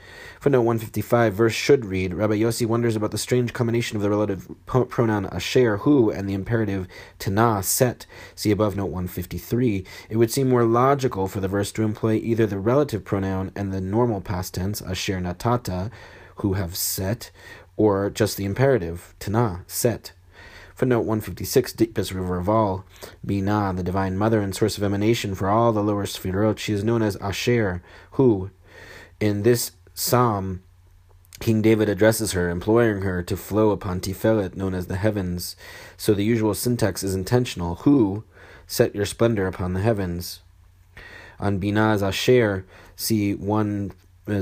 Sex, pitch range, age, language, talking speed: male, 95-110 Hz, 30-49, English, 170 wpm